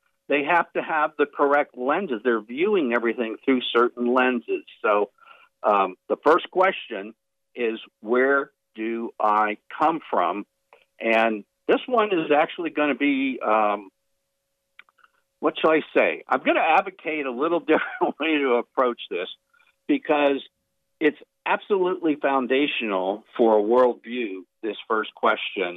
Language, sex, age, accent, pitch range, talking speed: English, male, 50-69, American, 115-170 Hz, 135 wpm